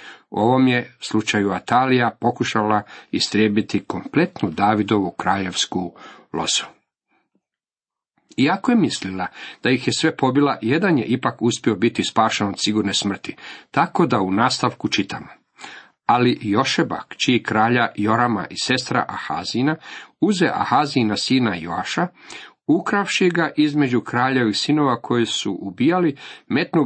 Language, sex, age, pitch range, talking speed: Croatian, male, 50-69, 105-135 Hz, 125 wpm